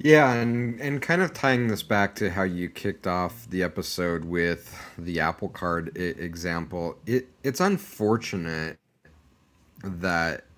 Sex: male